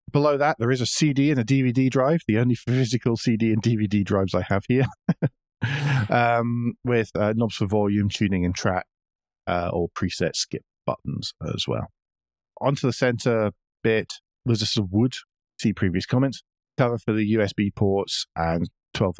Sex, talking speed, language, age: male, 170 wpm, English, 40-59